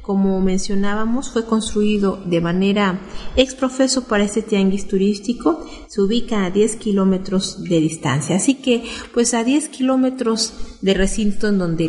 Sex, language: female, Spanish